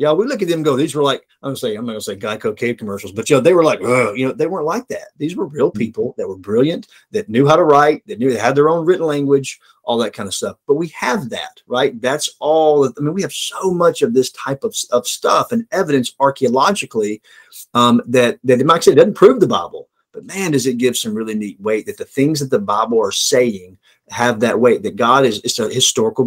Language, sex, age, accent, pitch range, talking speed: English, male, 30-49, American, 120-165 Hz, 265 wpm